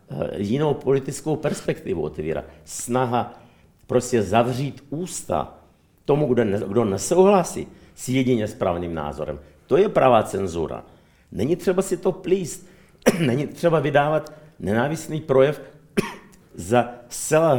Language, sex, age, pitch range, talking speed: Czech, male, 50-69, 120-165 Hz, 100 wpm